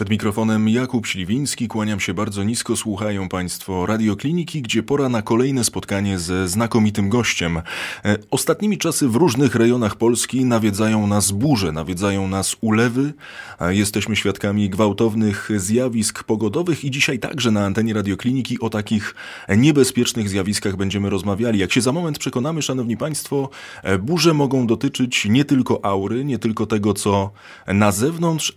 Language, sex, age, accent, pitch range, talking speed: Polish, male, 30-49, native, 100-125 Hz, 140 wpm